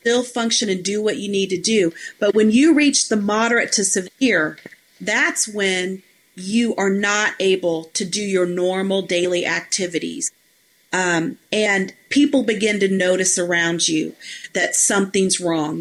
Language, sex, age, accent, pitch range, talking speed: English, female, 40-59, American, 185-225 Hz, 150 wpm